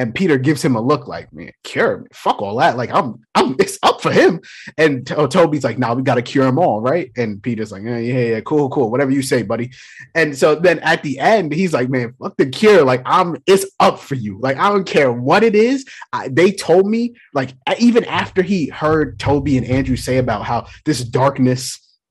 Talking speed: 235 wpm